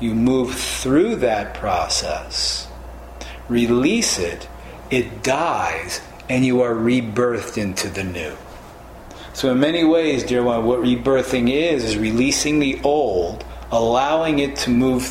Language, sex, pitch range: English, male, 110-130 Hz